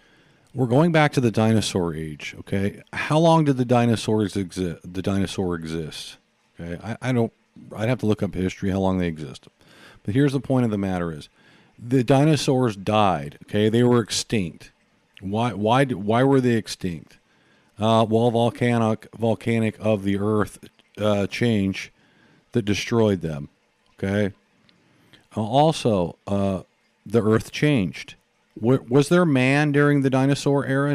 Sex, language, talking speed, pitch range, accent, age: male, English, 150 wpm, 95-125 Hz, American, 50-69